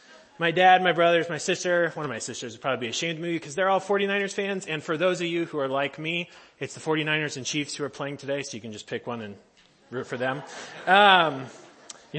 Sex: male